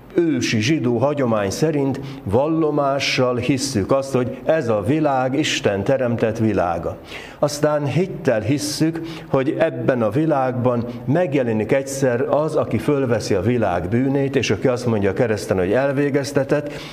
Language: Hungarian